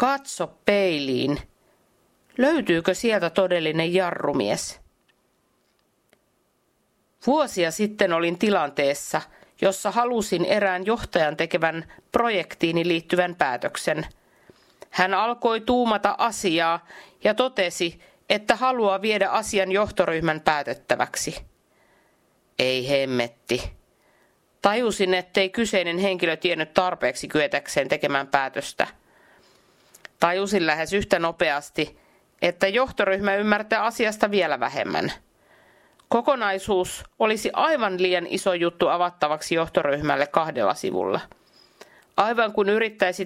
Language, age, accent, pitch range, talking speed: Finnish, 50-69, native, 160-205 Hz, 90 wpm